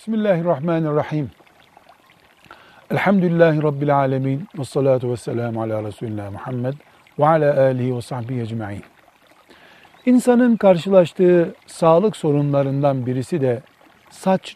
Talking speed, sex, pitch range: 250 wpm, male, 130-195 Hz